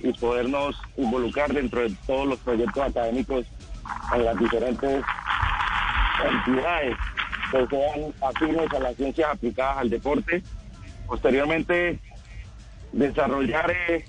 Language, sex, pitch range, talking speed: Spanish, male, 125-150 Hz, 100 wpm